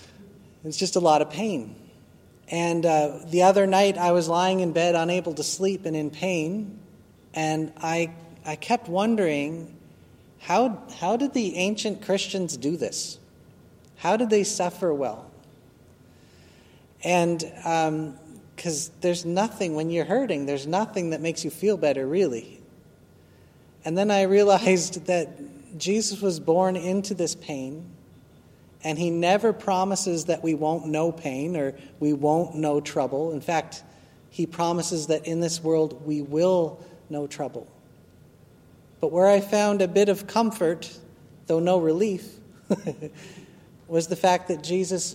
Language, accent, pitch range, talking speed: English, American, 155-185 Hz, 145 wpm